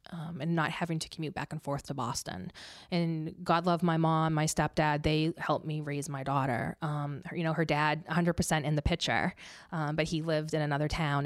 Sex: female